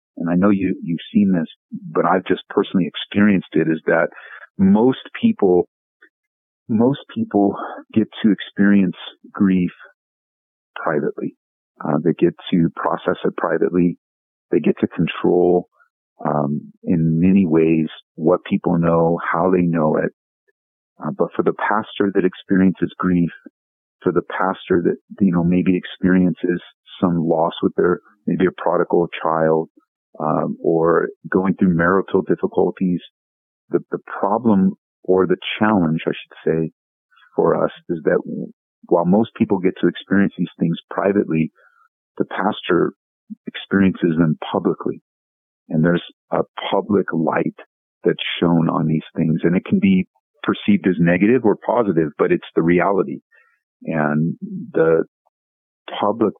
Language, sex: English, male